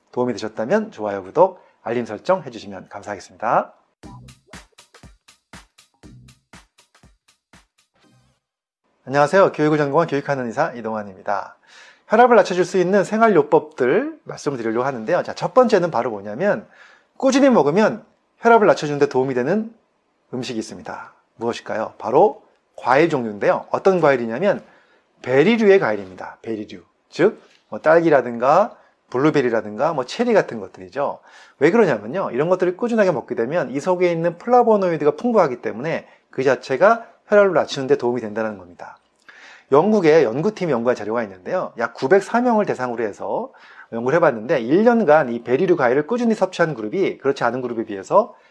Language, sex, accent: Korean, male, native